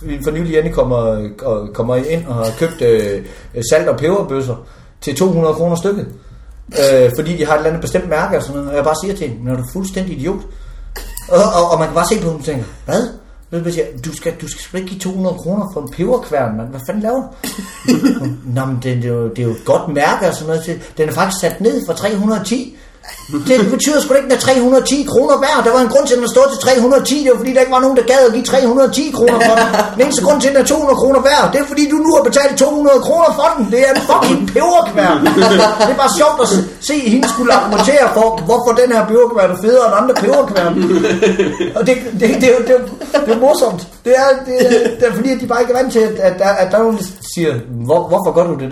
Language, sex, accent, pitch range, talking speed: Danish, male, native, 155-255 Hz, 250 wpm